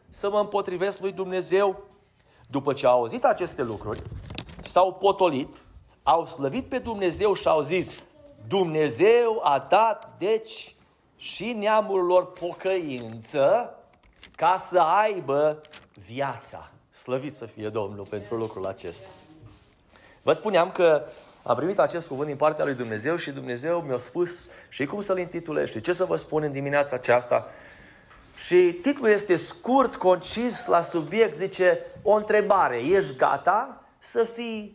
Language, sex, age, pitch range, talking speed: Romanian, male, 30-49, 150-210 Hz, 135 wpm